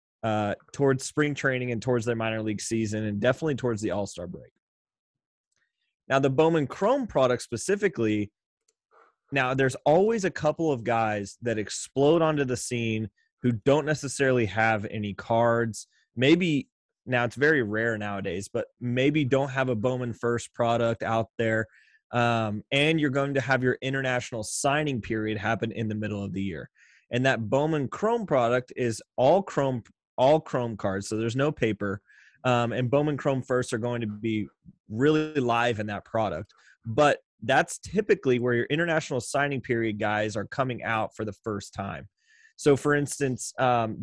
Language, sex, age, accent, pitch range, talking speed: English, male, 20-39, American, 110-135 Hz, 170 wpm